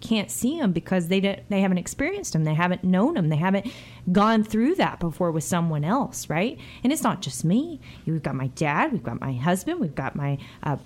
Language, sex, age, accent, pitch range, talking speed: English, female, 20-39, American, 180-235 Hz, 230 wpm